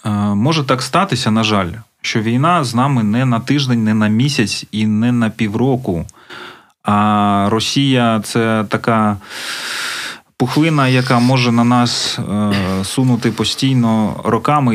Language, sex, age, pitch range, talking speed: Ukrainian, male, 30-49, 105-125 Hz, 125 wpm